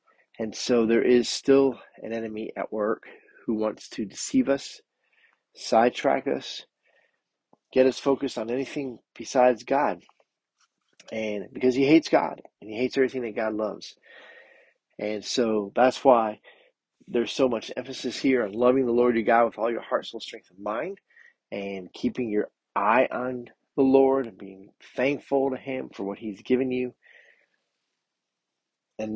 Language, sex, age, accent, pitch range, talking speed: English, male, 40-59, American, 110-135 Hz, 155 wpm